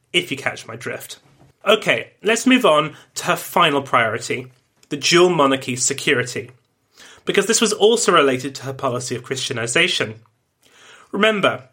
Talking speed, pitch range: 145 wpm, 135-205 Hz